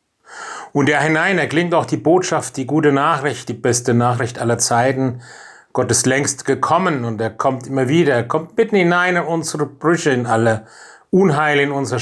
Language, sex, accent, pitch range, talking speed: German, male, German, 120-155 Hz, 190 wpm